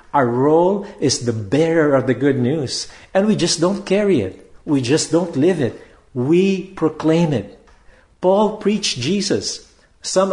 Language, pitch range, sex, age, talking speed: English, 105-160 Hz, male, 50-69, 155 wpm